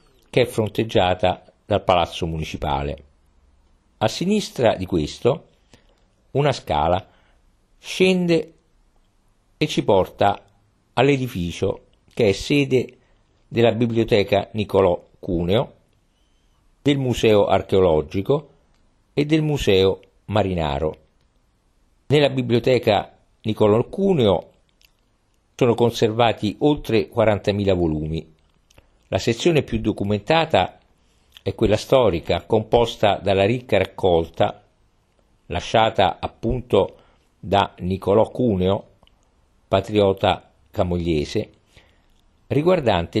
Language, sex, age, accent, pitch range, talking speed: Italian, male, 50-69, native, 90-120 Hz, 80 wpm